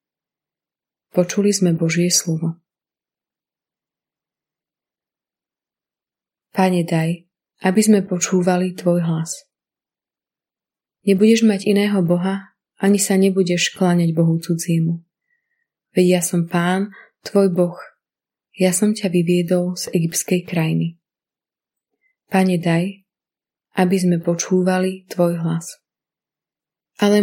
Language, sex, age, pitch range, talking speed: Slovak, female, 20-39, 175-200 Hz, 95 wpm